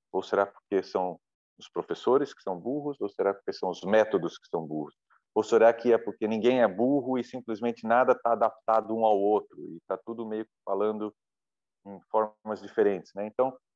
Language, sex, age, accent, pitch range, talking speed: Portuguese, male, 40-59, Brazilian, 95-130 Hz, 195 wpm